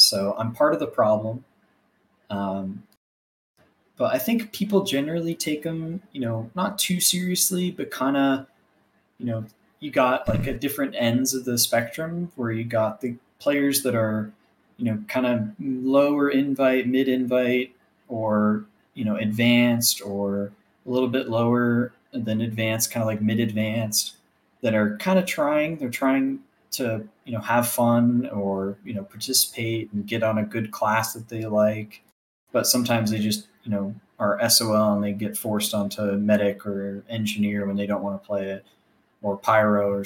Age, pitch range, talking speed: 20-39, 105-130 Hz, 170 wpm